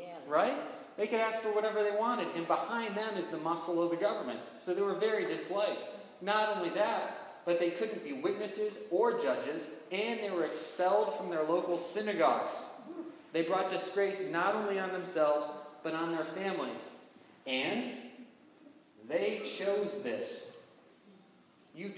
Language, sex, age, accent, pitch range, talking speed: English, male, 30-49, American, 165-205 Hz, 155 wpm